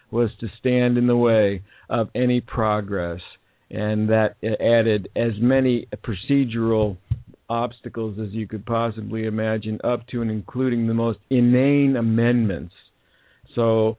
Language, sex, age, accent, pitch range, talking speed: English, male, 50-69, American, 110-130 Hz, 130 wpm